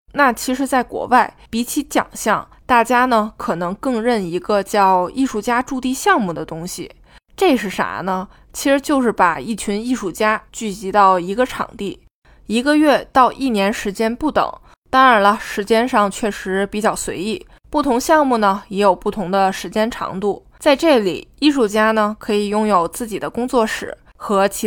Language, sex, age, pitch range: Chinese, female, 20-39, 195-250 Hz